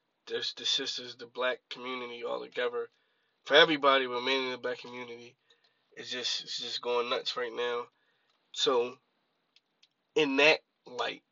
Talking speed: 145 wpm